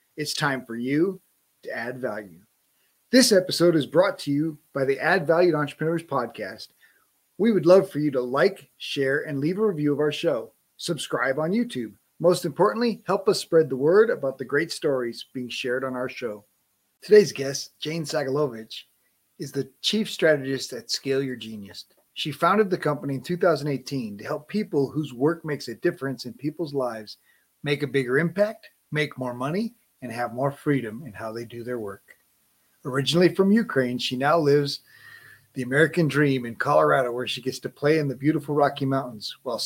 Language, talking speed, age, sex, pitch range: English, 185 wpm, 30-49, male, 130-165 Hz